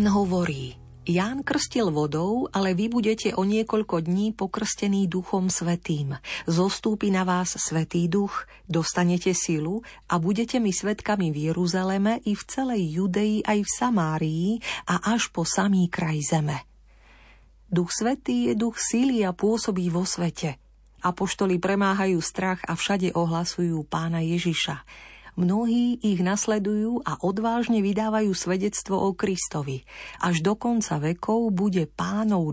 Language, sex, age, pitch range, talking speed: Slovak, female, 40-59, 165-210 Hz, 135 wpm